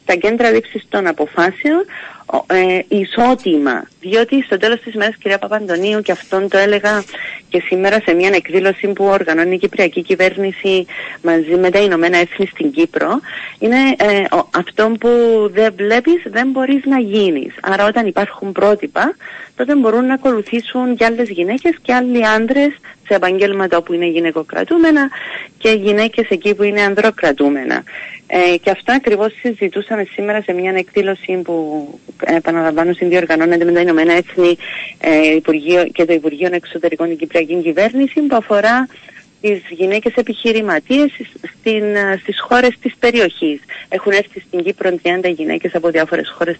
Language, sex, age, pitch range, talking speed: Greek, female, 30-49, 175-235 Hz, 145 wpm